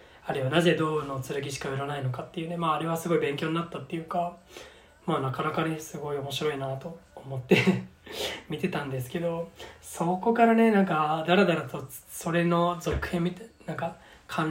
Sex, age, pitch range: male, 20-39, 145-180 Hz